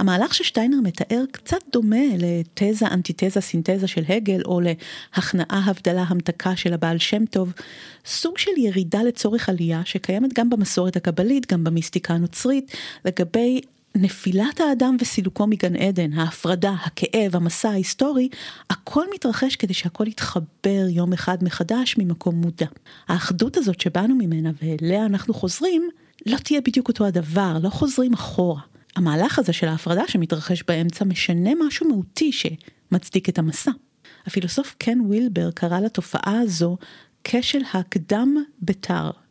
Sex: female